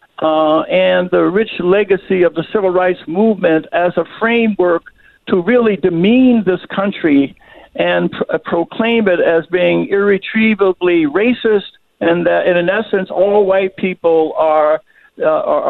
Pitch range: 170-215 Hz